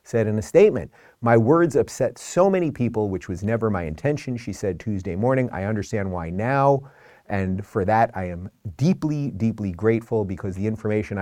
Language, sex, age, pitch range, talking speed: English, male, 30-49, 95-125 Hz, 180 wpm